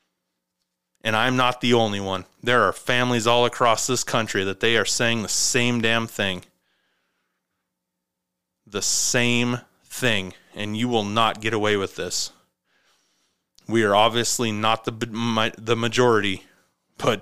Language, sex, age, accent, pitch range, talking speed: English, male, 30-49, American, 105-130 Hz, 140 wpm